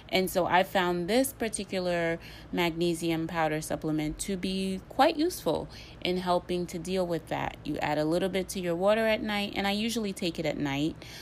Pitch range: 145-185 Hz